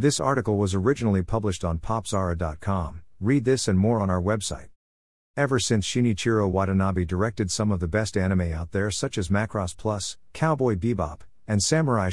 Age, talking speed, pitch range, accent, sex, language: 50-69, 170 wpm, 90-115 Hz, American, male, English